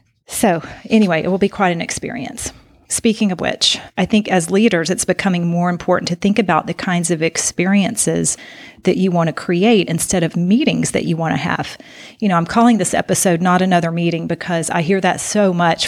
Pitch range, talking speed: 170-195 Hz, 205 wpm